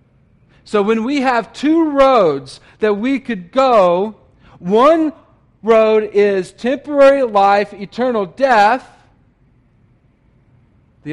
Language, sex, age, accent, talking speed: English, male, 40-59, American, 95 wpm